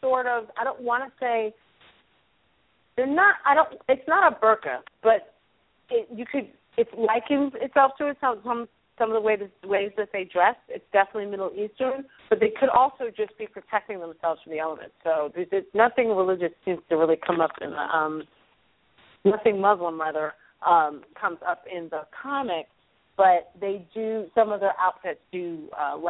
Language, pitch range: English, 180-245 Hz